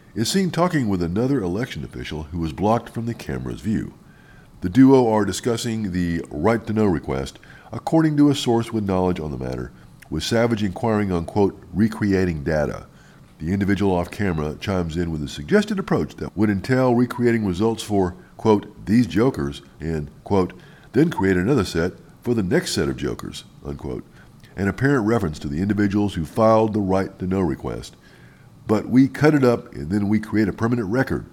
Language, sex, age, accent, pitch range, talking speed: English, male, 50-69, American, 85-115 Hz, 175 wpm